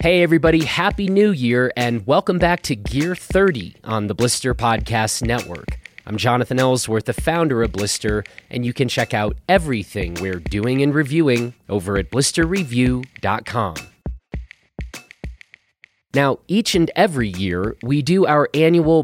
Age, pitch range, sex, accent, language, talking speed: 30-49, 115-160 Hz, male, American, English, 140 wpm